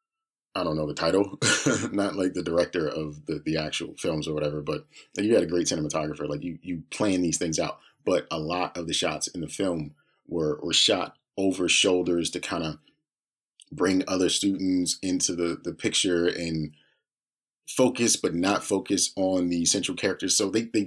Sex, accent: male, American